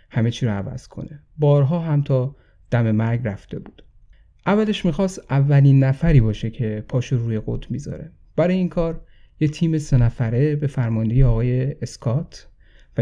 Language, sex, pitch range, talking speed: Persian, male, 115-140 Hz, 155 wpm